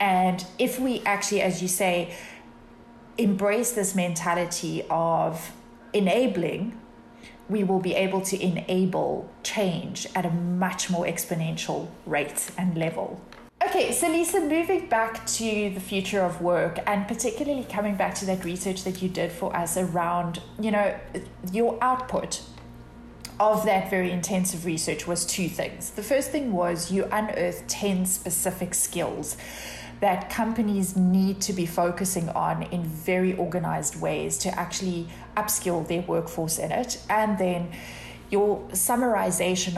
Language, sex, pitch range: English, female, 175-205 Hz